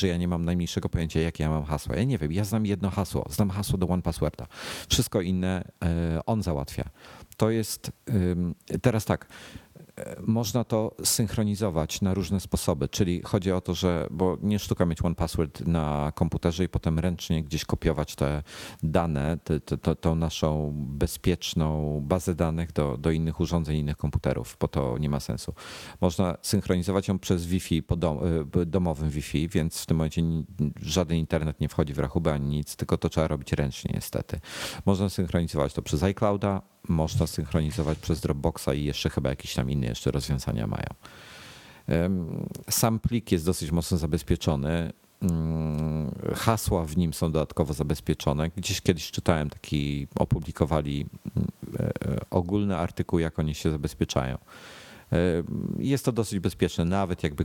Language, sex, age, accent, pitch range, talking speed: Polish, male, 40-59, native, 75-95 Hz, 155 wpm